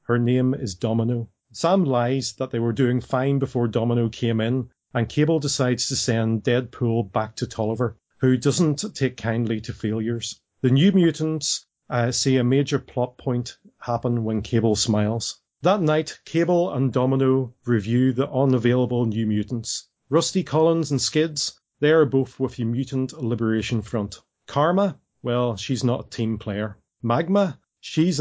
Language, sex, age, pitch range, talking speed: English, male, 30-49, 115-135 Hz, 155 wpm